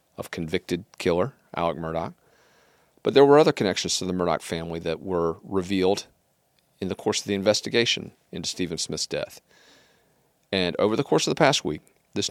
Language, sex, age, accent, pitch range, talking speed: English, male, 40-59, American, 85-105 Hz, 175 wpm